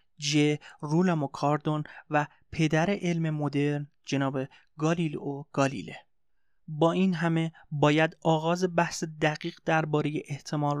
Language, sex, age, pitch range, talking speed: Persian, male, 30-49, 145-165 Hz, 105 wpm